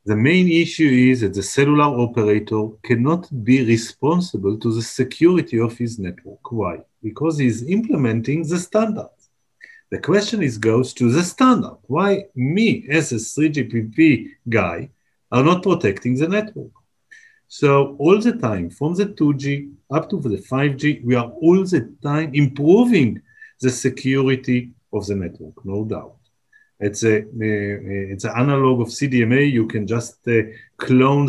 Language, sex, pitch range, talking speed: English, male, 110-145 Hz, 150 wpm